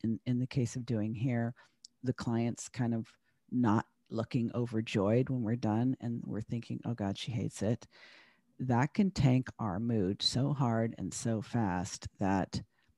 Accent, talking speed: American, 170 wpm